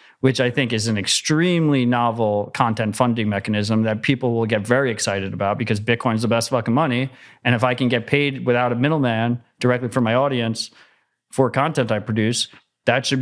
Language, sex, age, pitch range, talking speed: English, male, 30-49, 120-140 Hz, 195 wpm